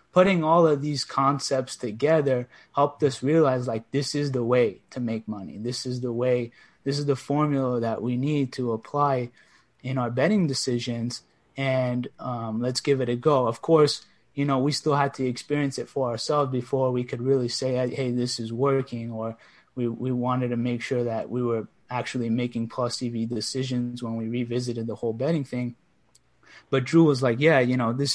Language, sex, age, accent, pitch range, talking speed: English, male, 20-39, American, 120-140 Hz, 195 wpm